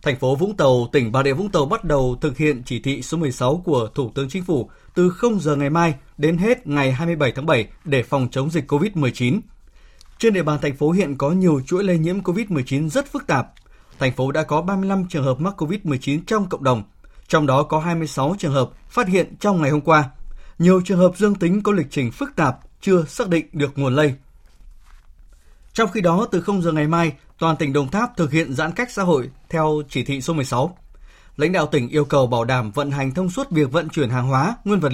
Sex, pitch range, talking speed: male, 135-180 Hz, 230 wpm